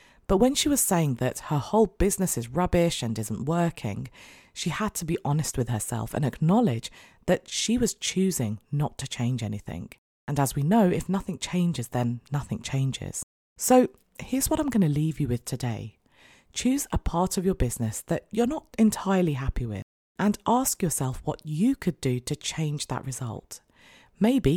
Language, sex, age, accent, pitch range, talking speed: English, female, 40-59, British, 130-190 Hz, 185 wpm